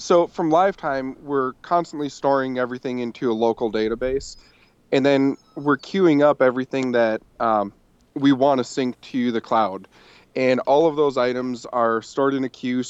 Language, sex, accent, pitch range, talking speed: English, male, American, 115-135 Hz, 170 wpm